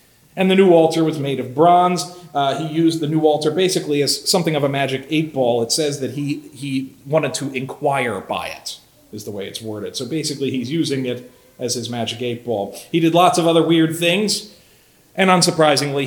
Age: 40-59